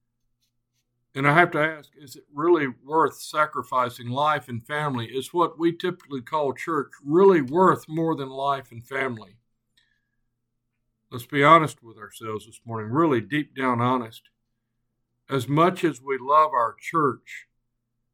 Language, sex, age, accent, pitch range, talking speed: English, male, 60-79, American, 120-155 Hz, 145 wpm